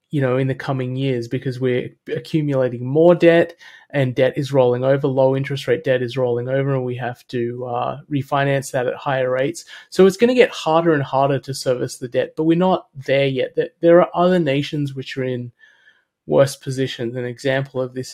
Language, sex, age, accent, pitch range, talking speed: English, male, 30-49, Australian, 125-145 Hz, 210 wpm